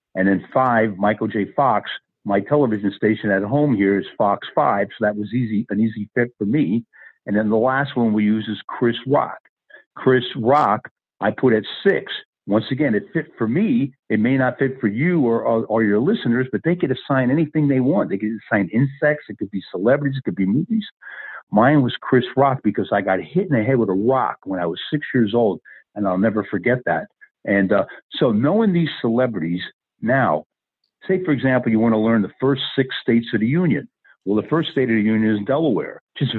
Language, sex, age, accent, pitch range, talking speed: English, male, 50-69, American, 105-140 Hz, 220 wpm